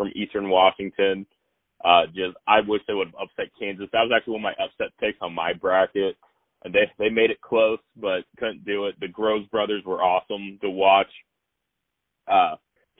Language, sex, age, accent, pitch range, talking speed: English, male, 20-39, American, 95-120 Hz, 190 wpm